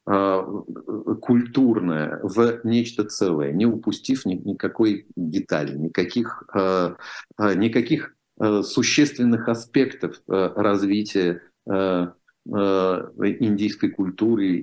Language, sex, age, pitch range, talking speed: Russian, male, 40-59, 85-105 Hz, 65 wpm